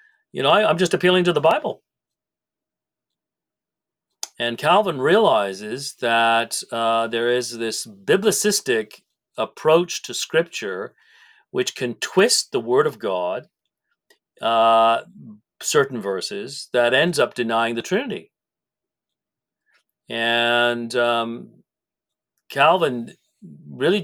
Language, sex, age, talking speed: English, male, 40-59, 100 wpm